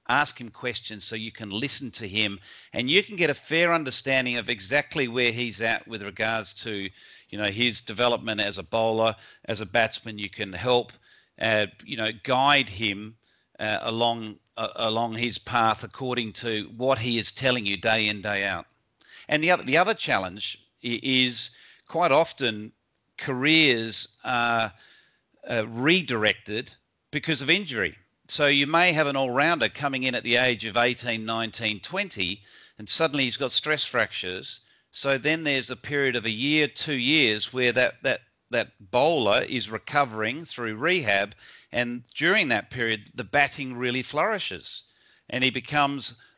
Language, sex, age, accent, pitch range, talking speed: English, male, 40-59, Australian, 110-140 Hz, 165 wpm